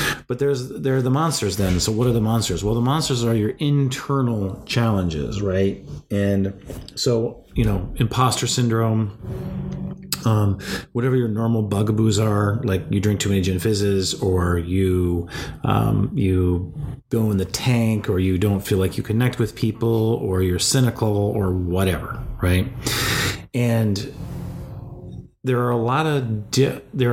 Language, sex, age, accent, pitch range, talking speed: English, male, 40-59, American, 95-120 Hz, 155 wpm